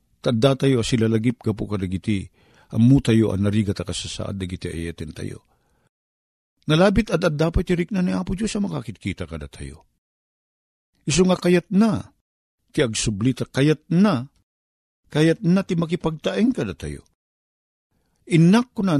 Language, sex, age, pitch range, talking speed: Filipino, male, 50-69, 110-170 Hz, 140 wpm